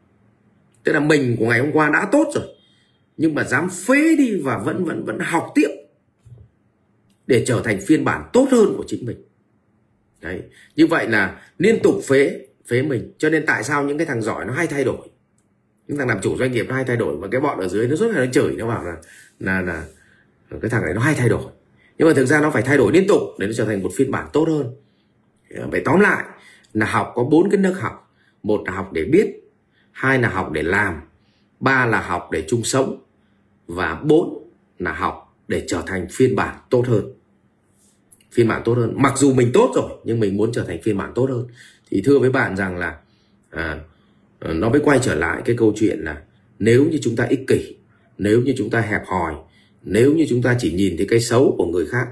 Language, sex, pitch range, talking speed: Vietnamese, male, 105-145 Hz, 230 wpm